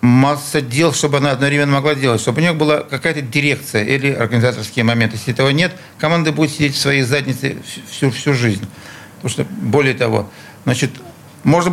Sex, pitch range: male, 125-160 Hz